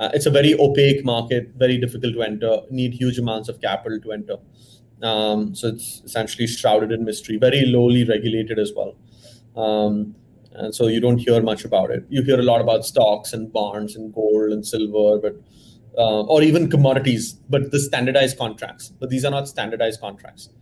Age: 30-49